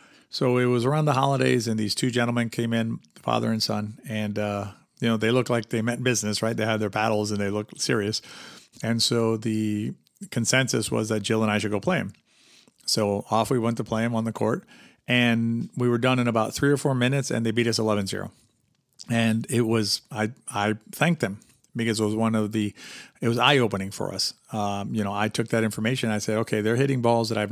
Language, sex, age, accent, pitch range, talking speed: English, male, 40-59, American, 110-130 Hz, 230 wpm